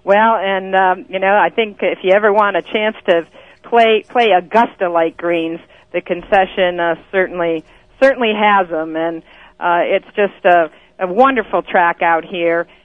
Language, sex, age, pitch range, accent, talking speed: English, female, 50-69, 185-240 Hz, American, 170 wpm